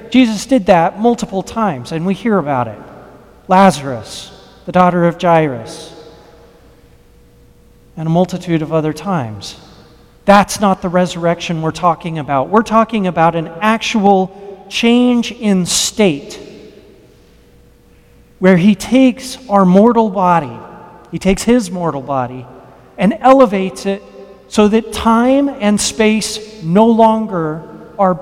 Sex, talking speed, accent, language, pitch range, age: male, 125 wpm, American, English, 155-220 Hz, 40-59